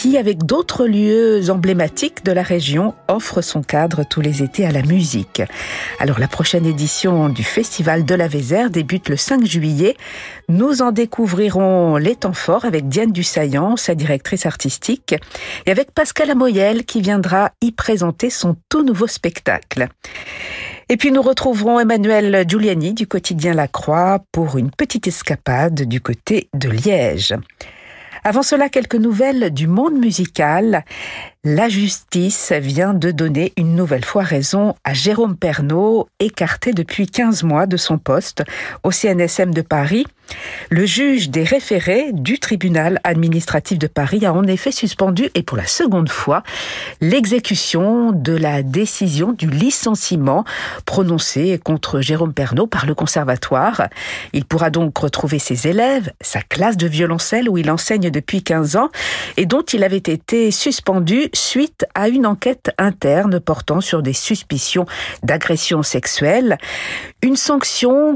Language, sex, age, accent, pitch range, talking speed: French, female, 50-69, French, 160-220 Hz, 150 wpm